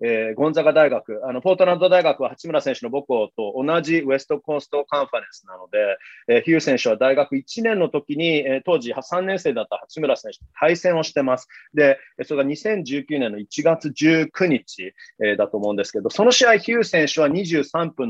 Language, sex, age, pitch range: Japanese, male, 30-49, 130-170 Hz